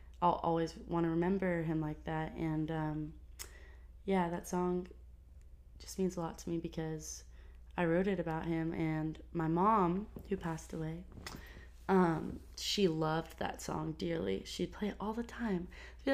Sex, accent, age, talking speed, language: female, American, 20-39, 165 wpm, English